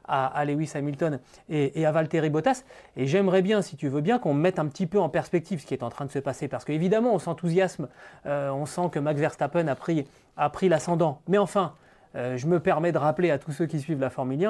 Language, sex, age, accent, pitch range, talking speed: French, male, 30-49, French, 150-205 Hz, 235 wpm